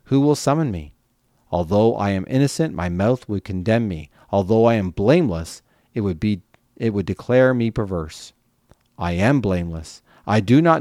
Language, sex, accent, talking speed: English, male, American, 170 wpm